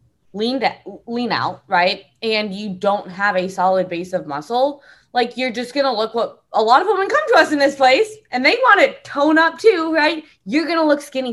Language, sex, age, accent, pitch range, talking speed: English, female, 20-39, American, 185-250 Hz, 230 wpm